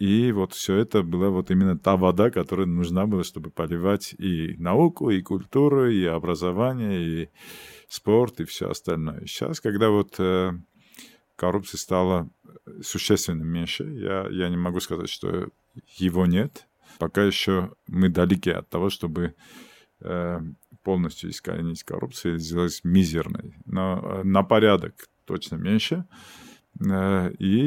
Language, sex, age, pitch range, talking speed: Russian, male, 50-69, 85-100 Hz, 130 wpm